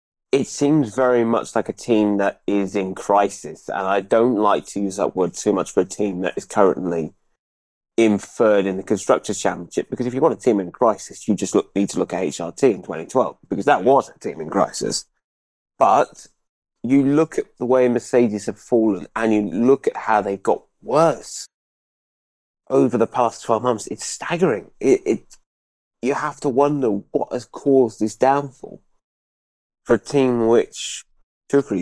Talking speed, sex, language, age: 185 wpm, male, Greek, 20-39